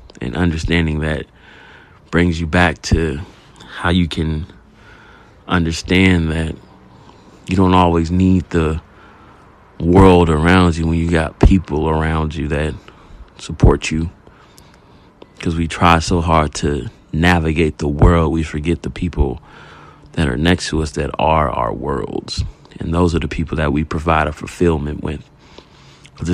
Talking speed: 145 wpm